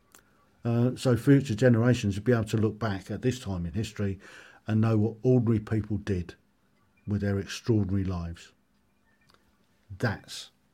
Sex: male